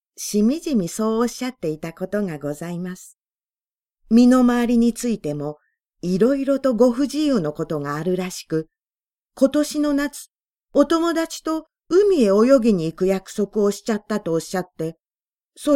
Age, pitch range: 40-59, 185-275 Hz